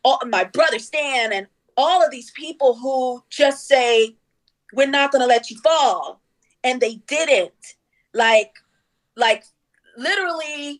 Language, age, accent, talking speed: English, 40-59, American, 135 wpm